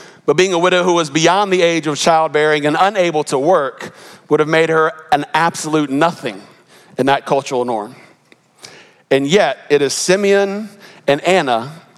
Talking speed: 165 wpm